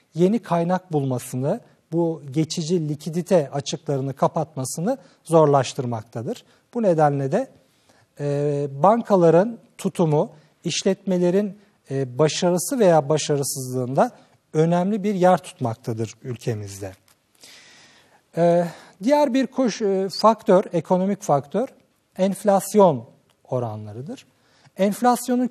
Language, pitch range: Turkish, 145-215 Hz